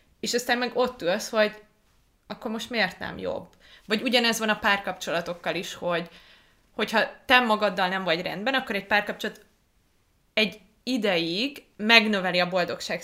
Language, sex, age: Hungarian, female, 20-39